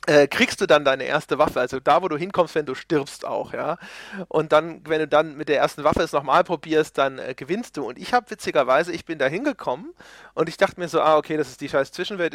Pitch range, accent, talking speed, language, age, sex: 155-200 Hz, German, 260 wpm, German, 40-59, male